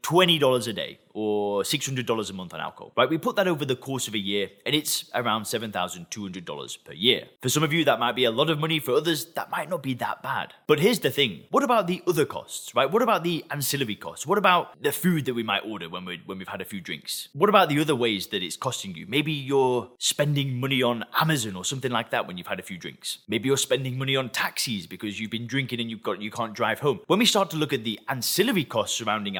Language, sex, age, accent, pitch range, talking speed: English, male, 20-39, British, 115-155 Hz, 265 wpm